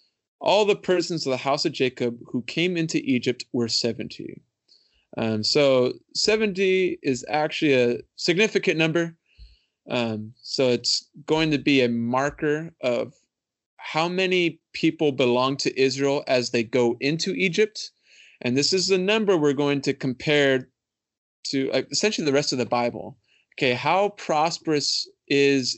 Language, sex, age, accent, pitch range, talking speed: English, male, 30-49, American, 120-150 Hz, 145 wpm